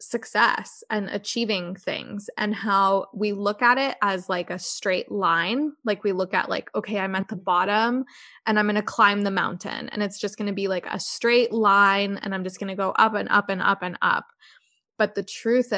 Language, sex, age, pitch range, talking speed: English, female, 20-39, 195-225 Hz, 220 wpm